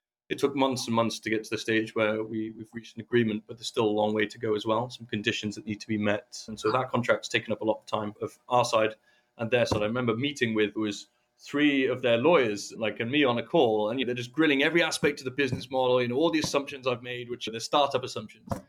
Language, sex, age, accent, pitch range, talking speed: English, male, 30-49, British, 110-135 Hz, 280 wpm